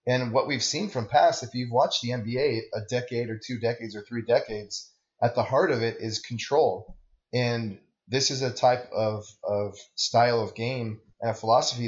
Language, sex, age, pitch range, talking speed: English, male, 20-39, 110-130 Hz, 195 wpm